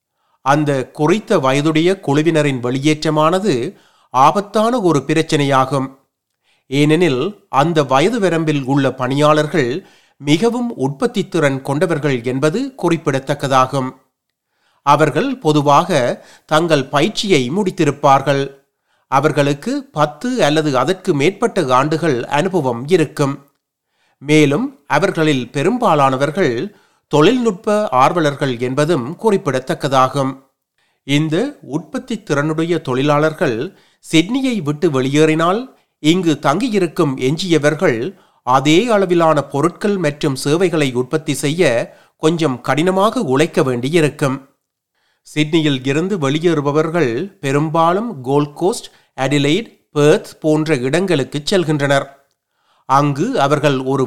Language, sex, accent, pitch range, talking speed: Tamil, male, native, 140-175 Hz, 80 wpm